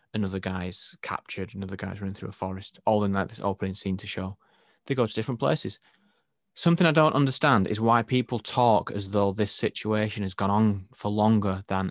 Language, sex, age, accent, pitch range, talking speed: English, male, 20-39, British, 95-115 Hz, 200 wpm